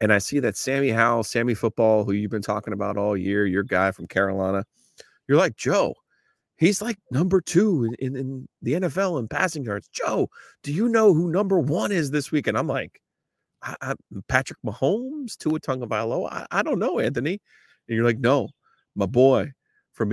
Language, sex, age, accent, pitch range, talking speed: English, male, 30-49, American, 105-170 Hz, 185 wpm